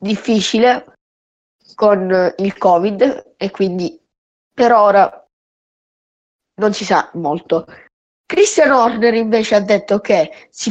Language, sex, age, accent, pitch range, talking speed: Italian, female, 20-39, native, 195-260 Hz, 105 wpm